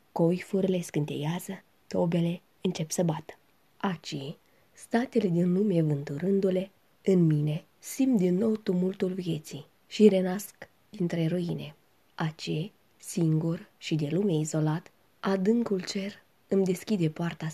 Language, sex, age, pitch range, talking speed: Romanian, female, 20-39, 155-190 Hz, 115 wpm